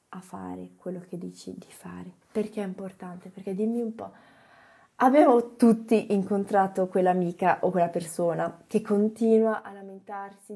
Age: 20-39